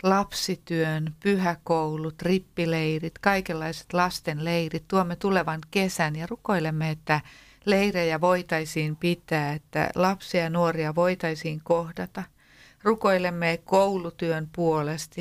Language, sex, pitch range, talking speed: Finnish, female, 160-190 Hz, 90 wpm